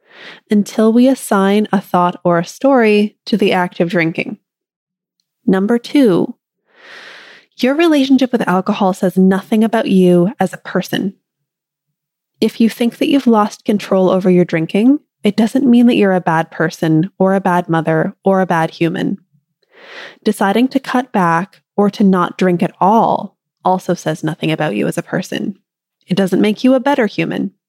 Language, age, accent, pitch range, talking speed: English, 20-39, American, 180-235 Hz, 165 wpm